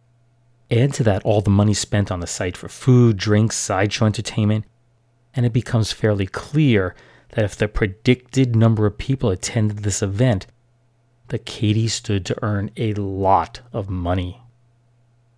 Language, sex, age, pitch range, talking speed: English, male, 30-49, 105-120 Hz, 150 wpm